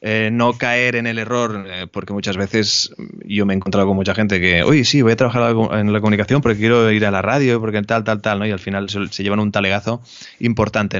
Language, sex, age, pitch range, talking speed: Spanish, male, 20-39, 100-115 Hz, 245 wpm